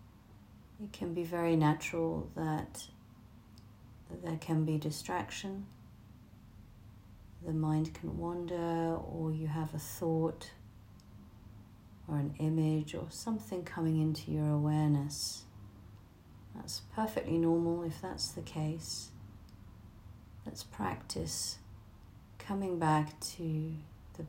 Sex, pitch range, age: female, 100-155 Hz, 40-59